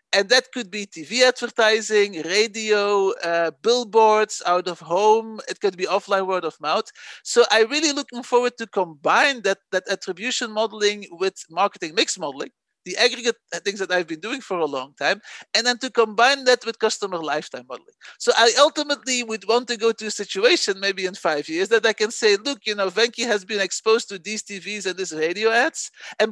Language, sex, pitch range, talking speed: English, male, 190-230 Hz, 200 wpm